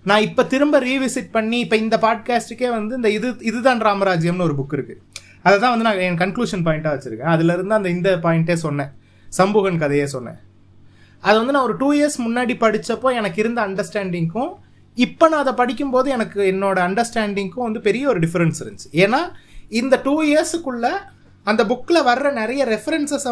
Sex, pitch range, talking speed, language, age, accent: male, 160-245 Hz, 165 wpm, Tamil, 30-49, native